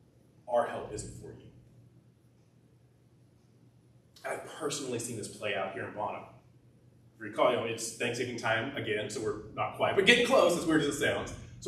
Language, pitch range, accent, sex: English, 115-125 Hz, American, male